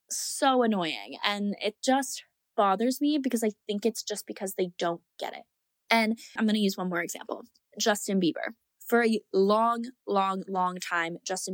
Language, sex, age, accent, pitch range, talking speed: English, female, 10-29, American, 185-230 Hz, 175 wpm